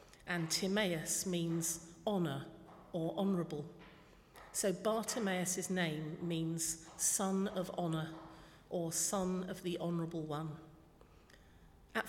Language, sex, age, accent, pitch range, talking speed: English, female, 50-69, British, 160-190 Hz, 100 wpm